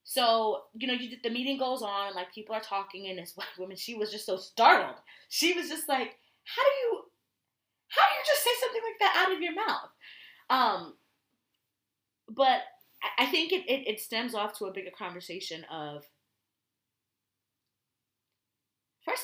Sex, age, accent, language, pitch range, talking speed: female, 20-39, American, English, 180-250 Hz, 175 wpm